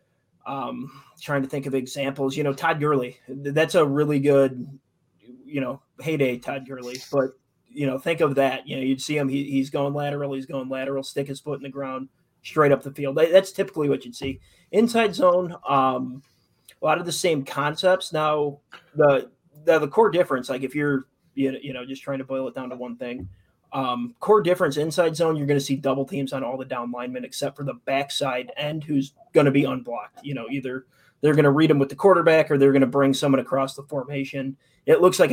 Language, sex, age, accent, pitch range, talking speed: English, male, 20-39, American, 135-155 Hz, 220 wpm